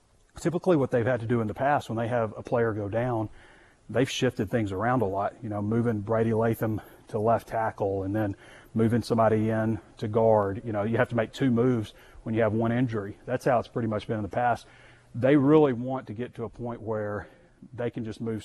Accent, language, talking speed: American, English, 235 wpm